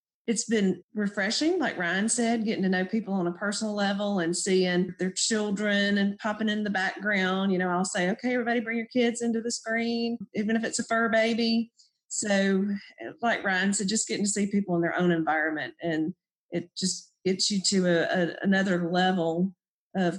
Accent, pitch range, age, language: American, 180-215 Hz, 40-59, English